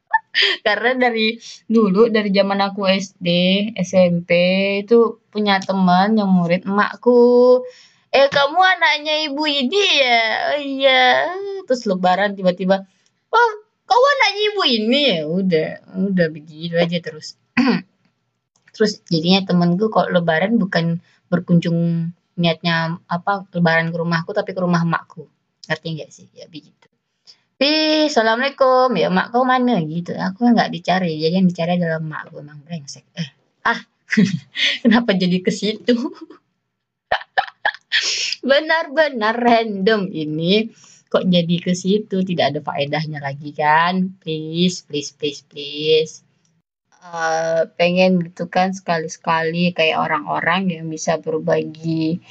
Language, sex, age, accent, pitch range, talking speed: Indonesian, female, 20-39, native, 165-225 Hz, 120 wpm